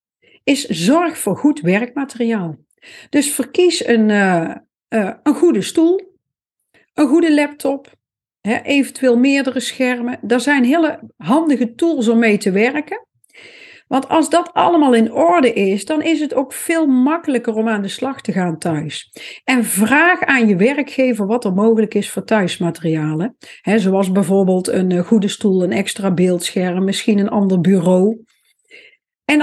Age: 50-69